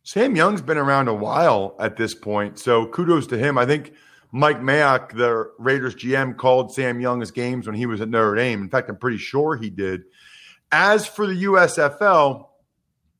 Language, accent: English, American